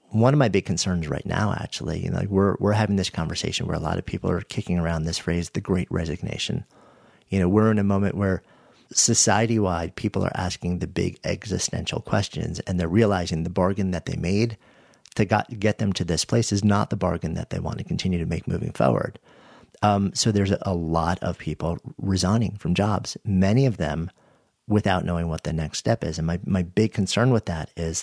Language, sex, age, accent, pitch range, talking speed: English, male, 40-59, American, 90-110 Hz, 215 wpm